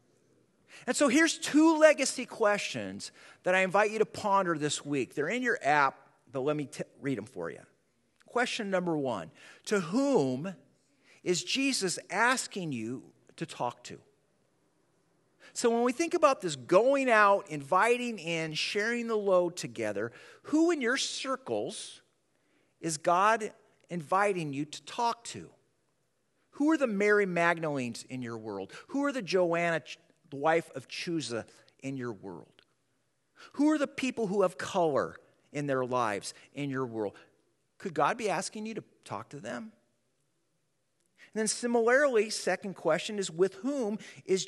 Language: English